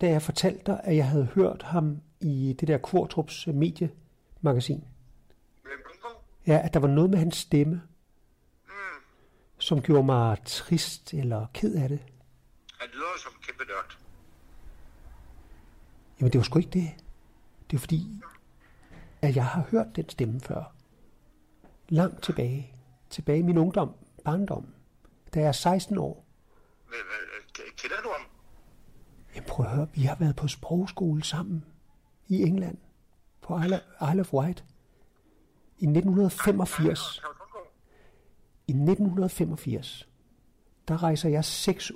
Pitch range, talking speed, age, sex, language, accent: 135-175 Hz, 125 wpm, 60-79, male, Danish, native